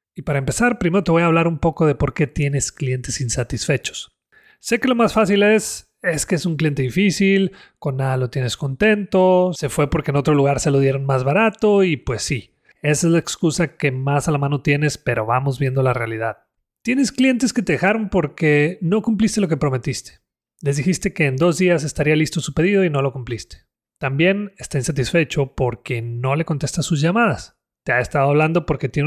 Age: 30-49